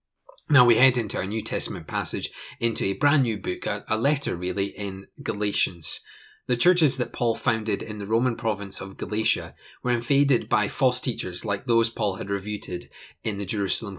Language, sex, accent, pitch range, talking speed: English, male, British, 105-130 Hz, 180 wpm